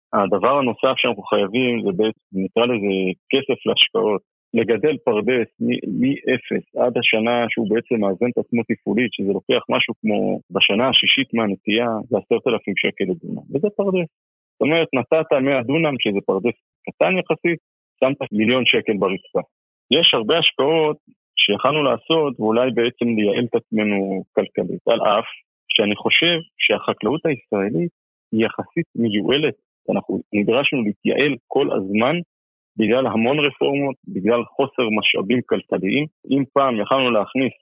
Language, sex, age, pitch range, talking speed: Hebrew, male, 40-59, 105-135 Hz, 135 wpm